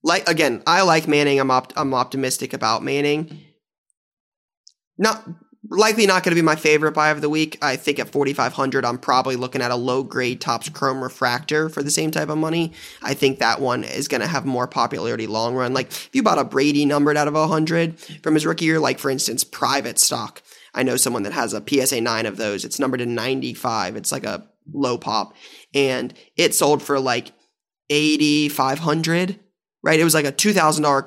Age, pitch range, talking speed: 20-39, 135-160 Hz, 205 wpm